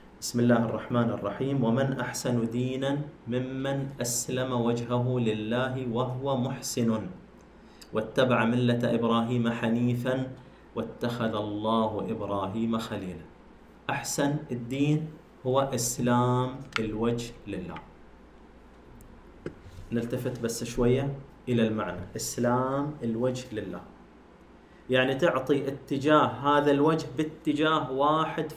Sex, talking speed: male, 90 wpm